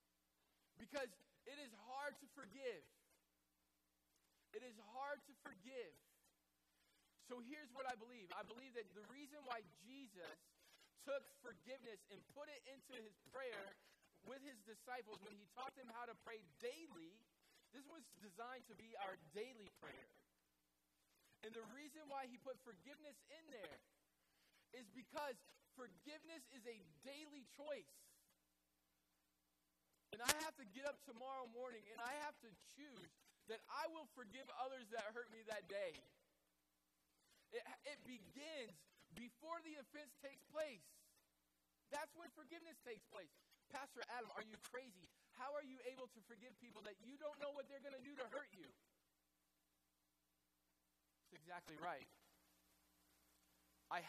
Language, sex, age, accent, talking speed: English, male, 20-39, American, 145 wpm